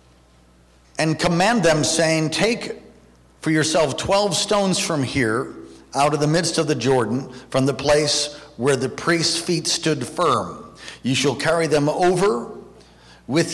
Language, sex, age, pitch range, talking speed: English, male, 50-69, 125-165 Hz, 145 wpm